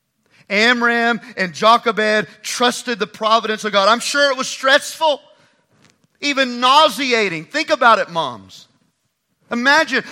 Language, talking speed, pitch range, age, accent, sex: English, 120 wpm, 215-260 Hz, 40-59, American, male